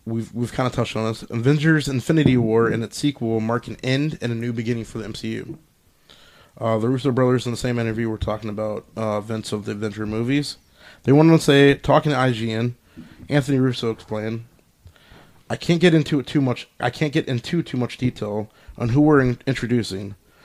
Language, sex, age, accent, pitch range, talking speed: English, male, 20-39, American, 110-135 Hz, 200 wpm